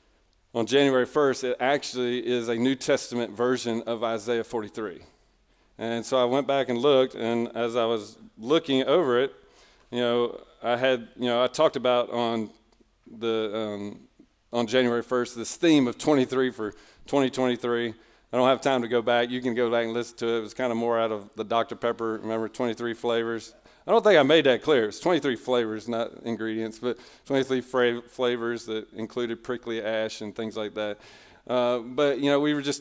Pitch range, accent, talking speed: 115-130 Hz, American, 195 wpm